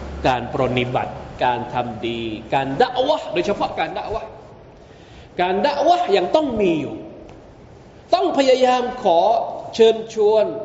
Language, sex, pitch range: Thai, male, 135-185 Hz